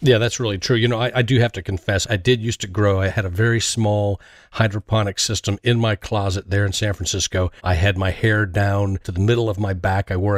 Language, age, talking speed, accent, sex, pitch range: English, 40-59, 255 wpm, American, male, 95-120 Hz